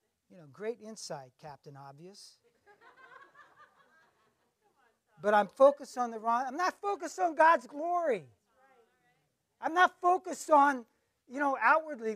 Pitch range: 180-255 Hz